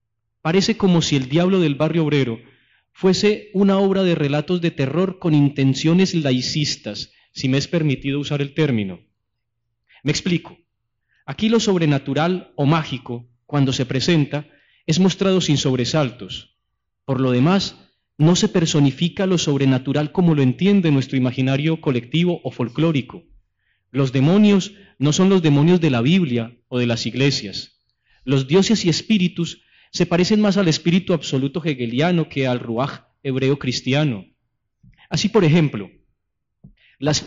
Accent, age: Colombian, 30-49